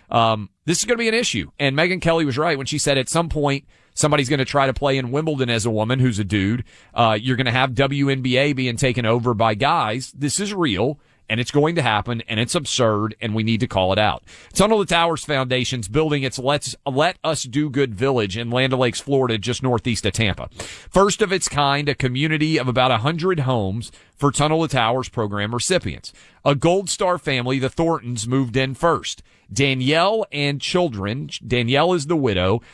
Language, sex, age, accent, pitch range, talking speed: English, male, 40-59, American, 115-150 Hz, 215 wpm